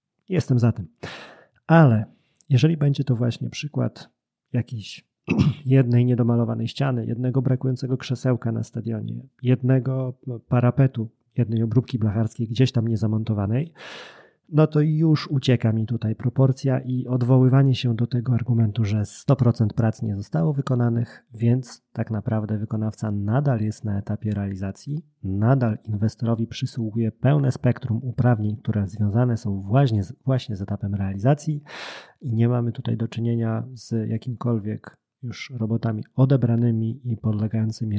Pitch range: 110-130 Hz